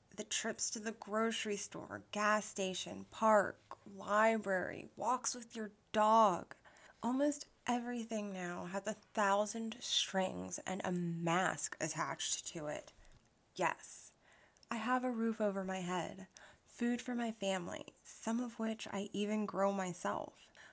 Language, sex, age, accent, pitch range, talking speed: English, female, 20-39, American, 180-220 Hz, 135 wpm